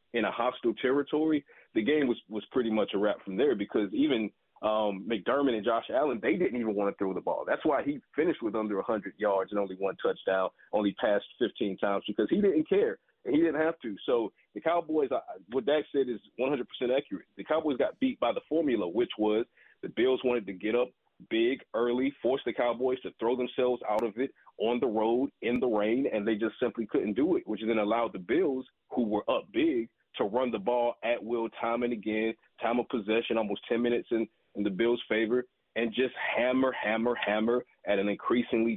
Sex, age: male, 30-49